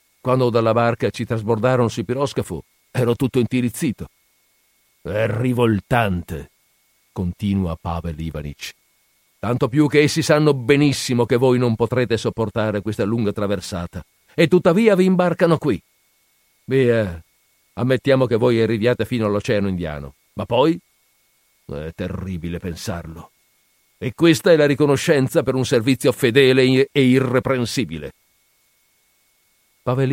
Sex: male